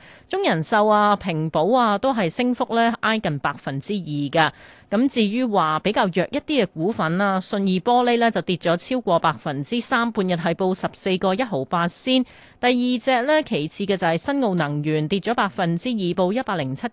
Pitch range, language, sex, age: 165-235 Hz, Chinese, female, 30-49